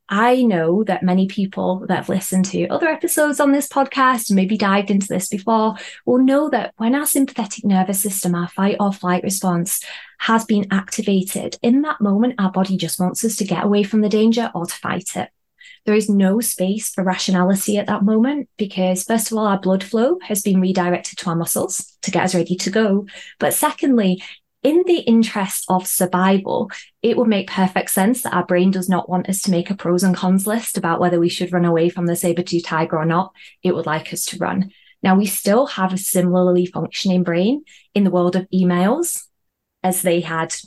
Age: 20-39